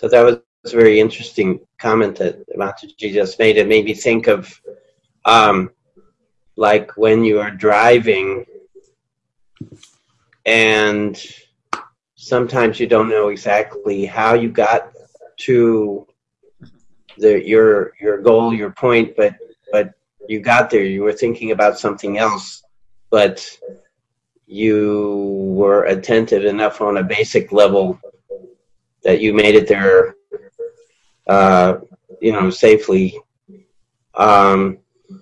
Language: English